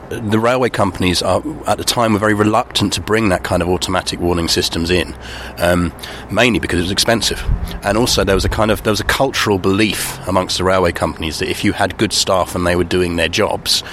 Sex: male